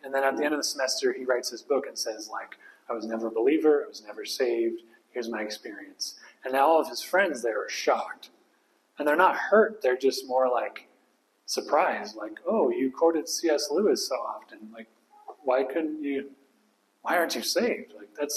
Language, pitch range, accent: English, 130-205 Hz, American